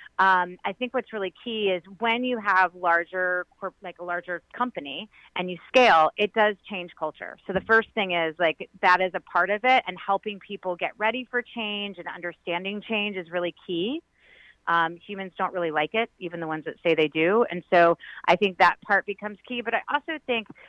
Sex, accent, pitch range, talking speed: female, American, 175-220 Hz, 210 wpm